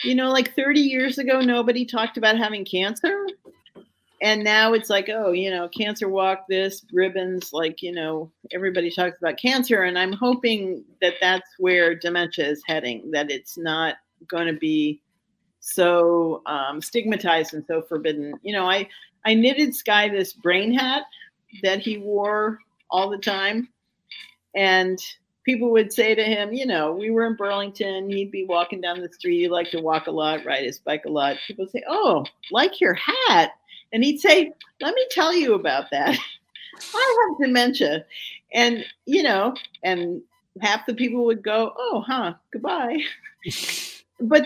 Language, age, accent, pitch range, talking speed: English, 50-69, American, 180-255 Hz, 170 wpm